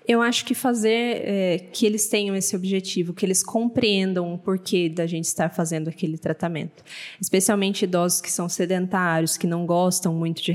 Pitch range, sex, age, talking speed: 175-220 Hz, female, 20-39, 175 wpm